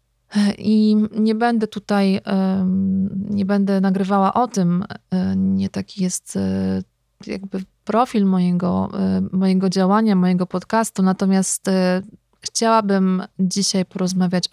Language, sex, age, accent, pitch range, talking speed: Polish, female, 20-39, native, 180-205 Hz, 95 wpm